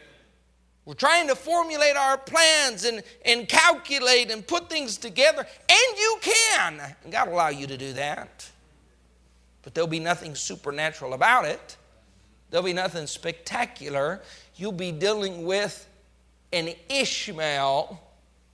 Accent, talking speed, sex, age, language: American, 135 wpm, male, 50-69, English